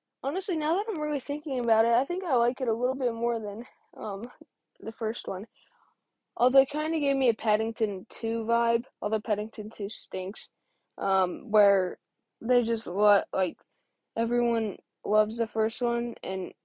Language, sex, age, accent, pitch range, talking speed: English, female, 10-29, American, 215-260 Hz, 175 wpm